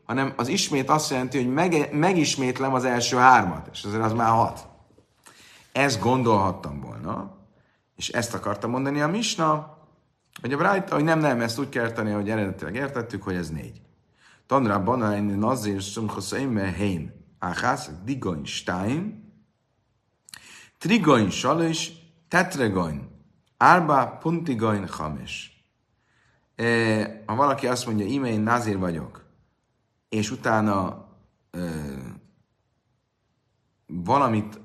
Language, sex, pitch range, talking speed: Hungarian, male, 95-130 Hz, 115 wpm